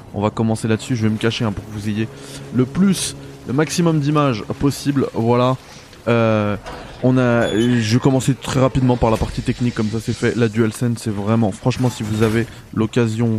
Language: French